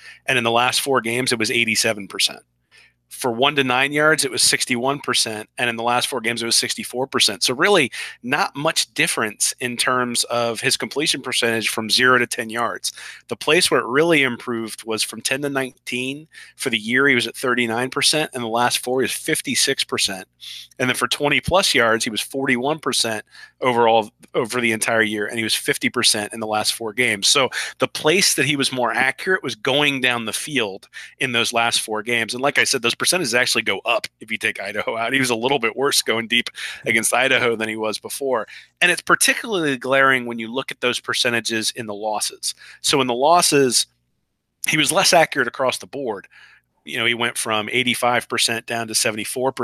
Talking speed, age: 205 wpm, 30-49